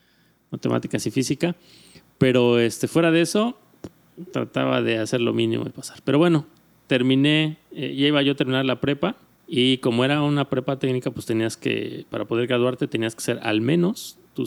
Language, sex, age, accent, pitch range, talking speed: Spanish, male, 30-49, Mexican, 120-145 Hz, 185 wpm